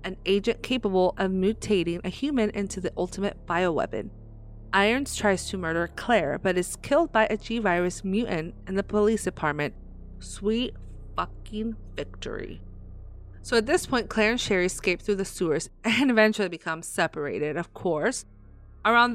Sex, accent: female, American